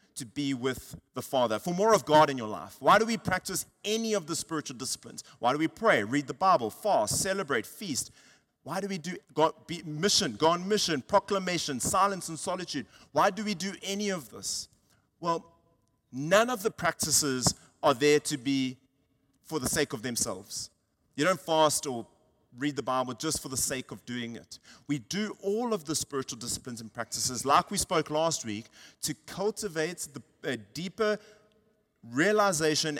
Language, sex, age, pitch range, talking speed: English, male, 30-49, 130-180 Hz, 175 wpm